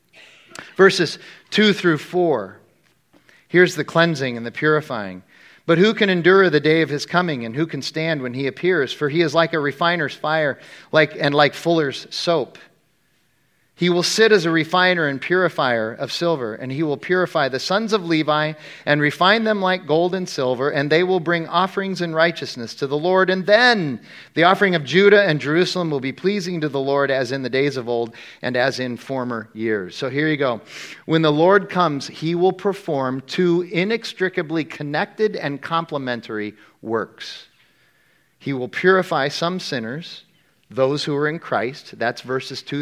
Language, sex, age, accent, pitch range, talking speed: English, male, 40-59, American, 135-175 Hz, 180 wpm